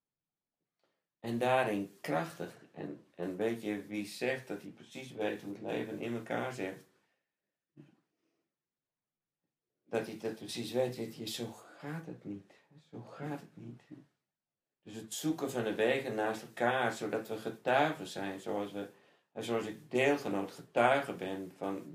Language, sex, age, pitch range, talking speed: Dutch, male, 50-69, 100-120 Hz, 150 wpm